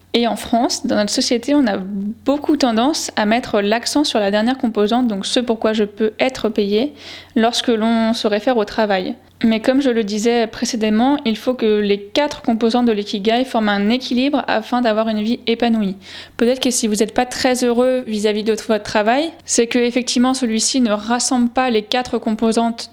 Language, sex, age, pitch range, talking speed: French, female, 20-39, 220-255 Hz, 195 wpm